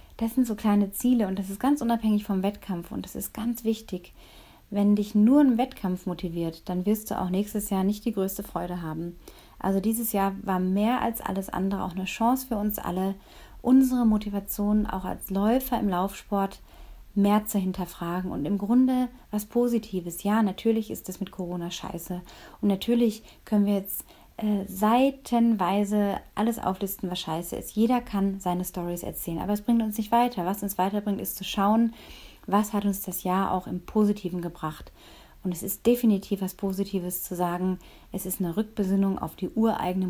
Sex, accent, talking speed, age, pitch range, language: female, German, 185 wpm, 30-49, 180-215 Hz, German